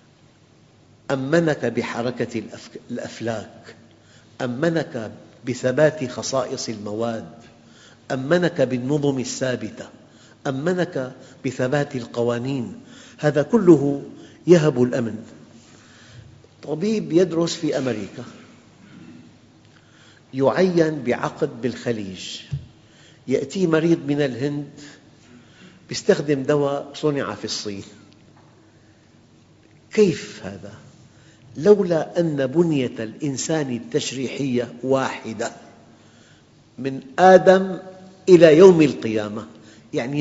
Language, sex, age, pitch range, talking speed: Arabic, male, 50-69, 120-160 Hz, 70 wpm